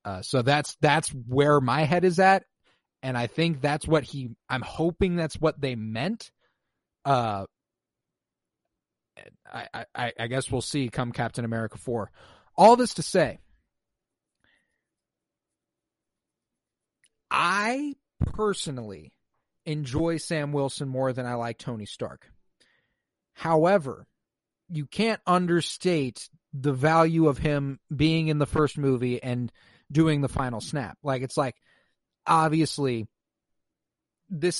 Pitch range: 130-160 Hz